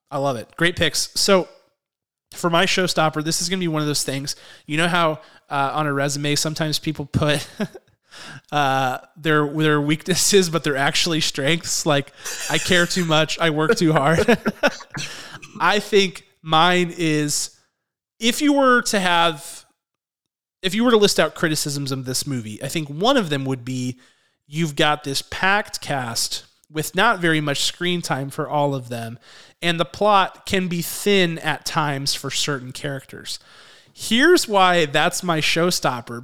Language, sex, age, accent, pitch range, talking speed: English, male, 30-49, American, 145-185 Hz, 170 wpm